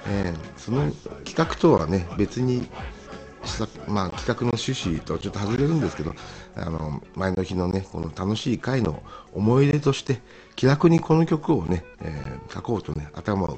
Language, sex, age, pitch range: Japanese, male, 60-79, 75-110 Hz